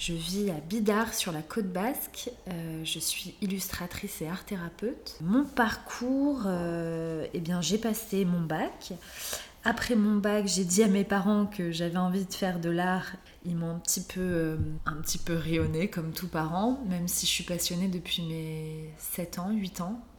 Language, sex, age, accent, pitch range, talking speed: French, female, 20-39, French, 165-205 Hz, 185 wpm